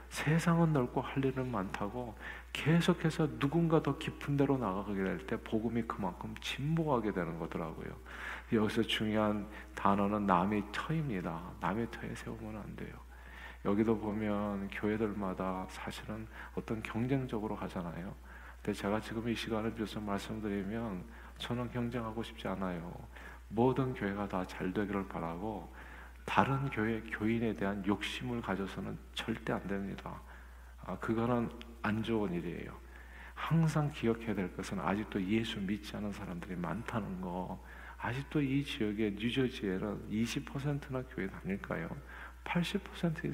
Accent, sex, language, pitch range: native, male, Korean, 95-125 Hz